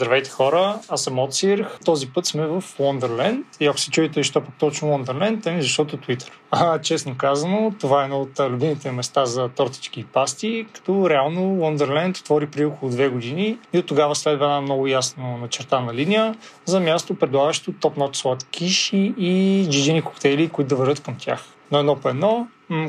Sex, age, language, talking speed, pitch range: male, 30-49, Bulgarian, 185 wpm, 140-180 Hz